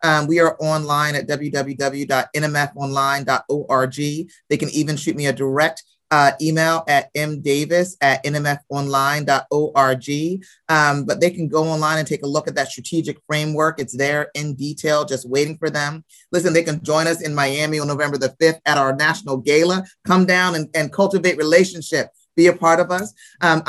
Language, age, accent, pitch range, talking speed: English, 30-49, American, 145-165 Hz, 170 wpm